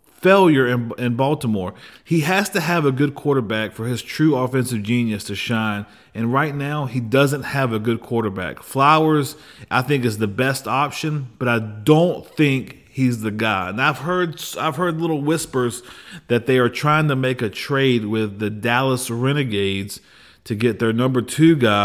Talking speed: 180 wpm